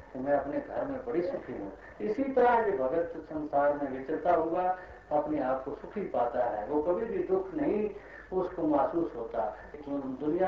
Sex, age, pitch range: male, 60-79, 150-180 Hz